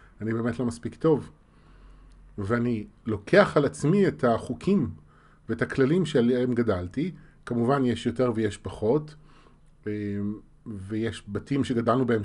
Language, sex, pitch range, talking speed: Hebrew, male, 110-150 Hz, 120 wpm